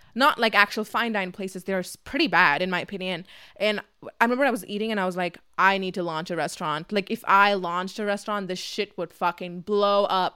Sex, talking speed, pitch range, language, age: female, 225 wpm, 185-220 Hz, English, 20-39